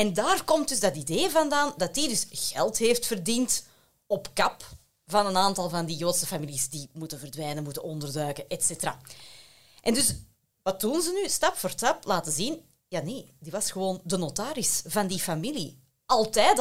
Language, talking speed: Dutch, 180 wpm